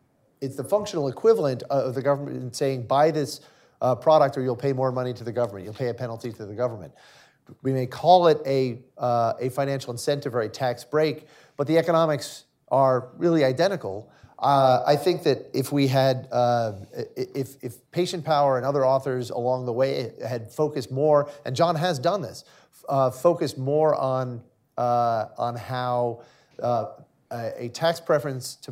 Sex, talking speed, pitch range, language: male, 175 wpm, 120-145 Hz, English